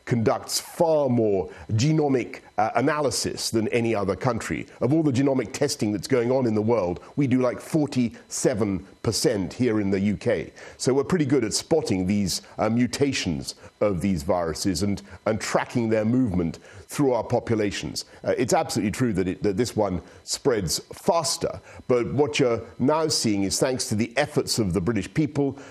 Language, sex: English, male